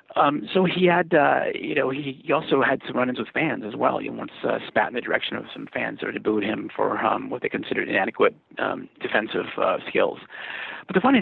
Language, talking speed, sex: English, 240 wpm, male